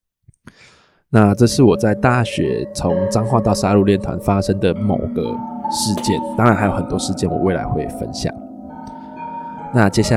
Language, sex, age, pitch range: Chinese, male, 20-39, 95-115 Hz